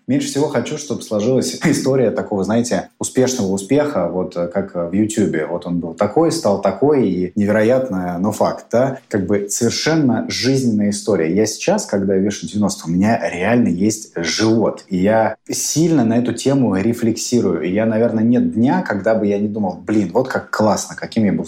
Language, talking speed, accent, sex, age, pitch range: Russian, 180 wpm, native, male, 20-39, 100-125 Hz